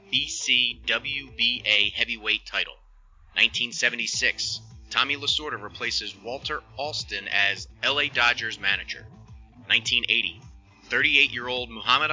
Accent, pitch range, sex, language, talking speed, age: American, 105-130 Hz, male, English, 95 wpm, 30-49